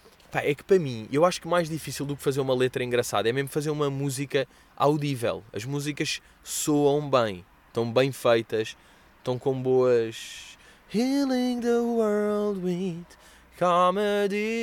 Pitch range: 95-140 Hz